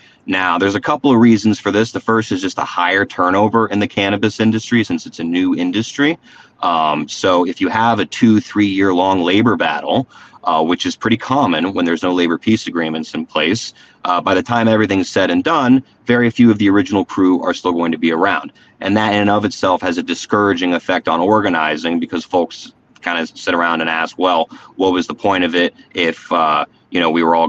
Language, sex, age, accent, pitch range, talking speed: English, male, 30-49, American, 90-115 Hz, 225 wpm